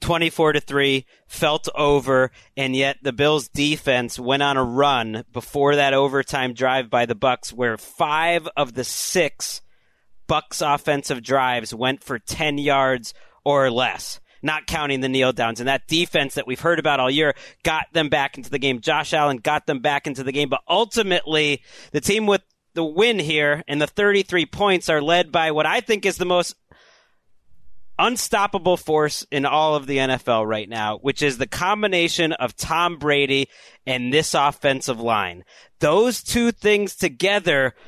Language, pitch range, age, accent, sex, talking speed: English, 135-185 Hz, 30-49, American, male, 175 wpm